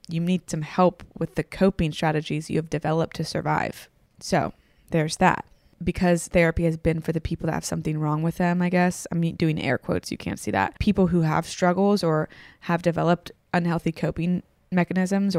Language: English